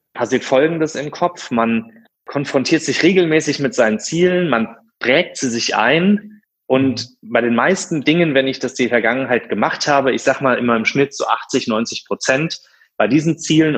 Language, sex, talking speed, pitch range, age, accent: German, male, 185 wpm, 115-160 Hz, 30-49, German